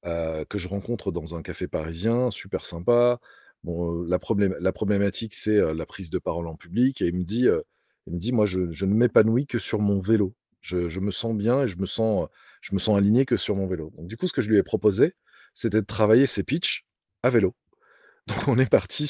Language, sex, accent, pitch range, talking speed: French, male, French, 90-120 Hz, 245 wpm